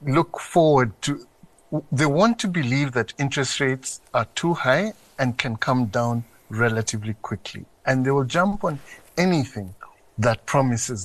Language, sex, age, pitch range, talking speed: English, male, 60-79, 120-155 Hz, 145 wpm